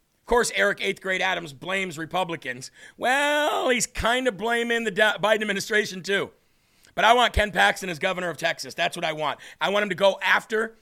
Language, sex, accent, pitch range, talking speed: English, male, American, 175-215 Hz, 200 wpm